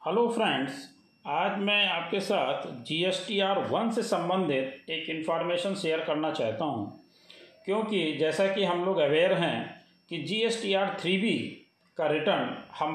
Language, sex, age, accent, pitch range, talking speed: Hindi, male, 40-59, native, 160-200 Hz, 150 wpm